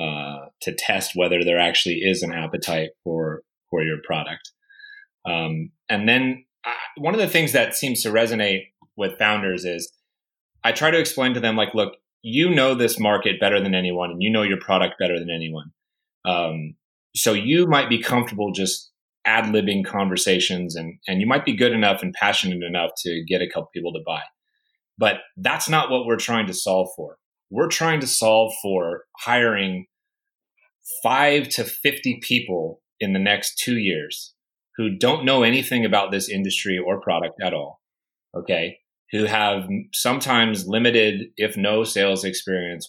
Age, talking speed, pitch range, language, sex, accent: 30-49, 170 wpm, 95-130 Hz, English, male, American